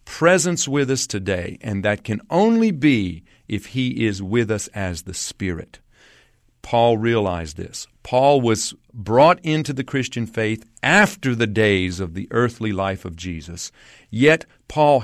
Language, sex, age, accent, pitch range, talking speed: English, male, 50-69, American, 95-130 Hz, 150 wpm